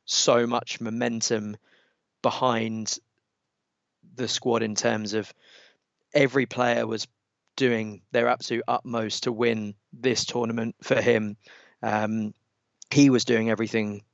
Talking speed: 115 wpm